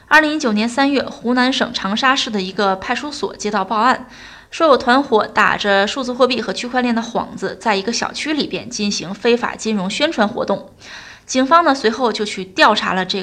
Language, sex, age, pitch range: Chinese, female, 20-39, 205-270 Hz